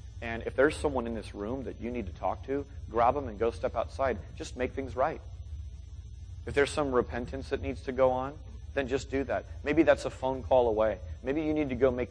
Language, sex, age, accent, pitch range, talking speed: English, male, 30-49, American, 95-140 Hz, 240 wpm